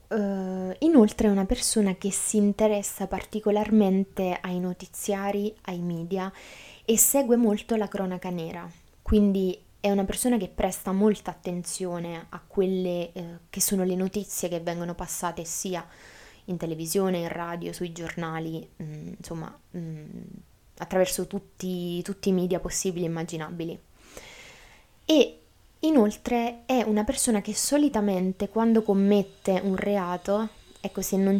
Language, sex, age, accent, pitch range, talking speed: Italian, female, 20-39, native, 175-205 Hz, 120 wpm